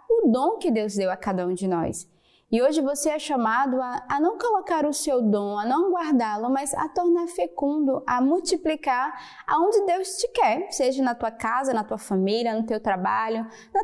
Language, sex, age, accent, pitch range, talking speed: Portuguese, female, 20-39, Brazilian, 235-300 Hz, 200 wpm